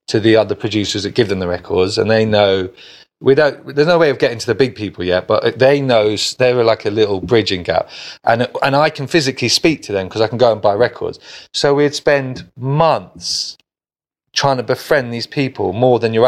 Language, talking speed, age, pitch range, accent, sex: English, 225 wpm, 30-49, 100-135 Hz, British, male